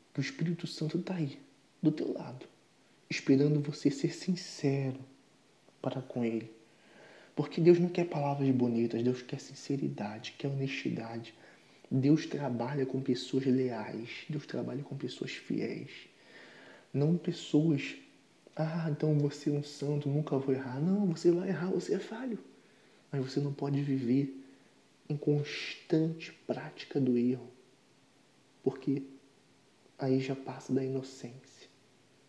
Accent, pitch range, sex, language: Brazilian, 130-155 Hz, male, Portuguese